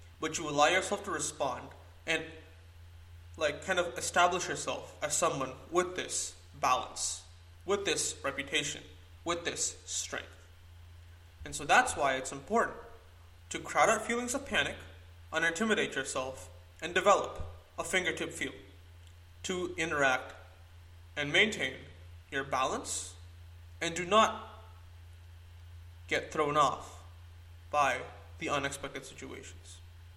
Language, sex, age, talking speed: English, male, 20-39, 115 wpm